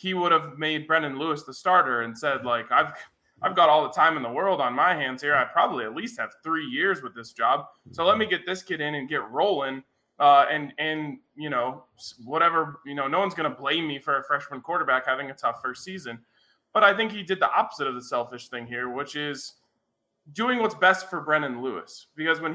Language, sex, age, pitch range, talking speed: English, male, 20-39, 135-175 Hz, 235 wpm